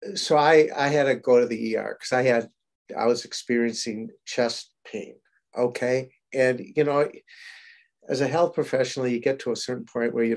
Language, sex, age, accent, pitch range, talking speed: English, male, 50-69, American, 115-140 Hz, 190 wpm